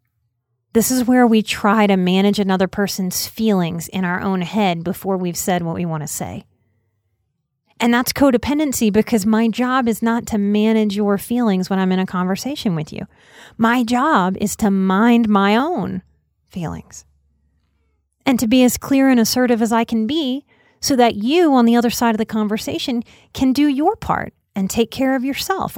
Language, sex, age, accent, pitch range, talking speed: English, female, 30-49, American, 185-240 Hz, 185 wpm